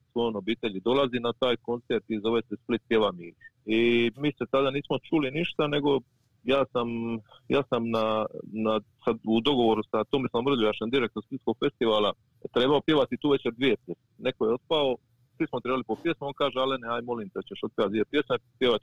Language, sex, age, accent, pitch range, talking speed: Croatian, male, 40-59, native, 115-145 Hz, 190 wpm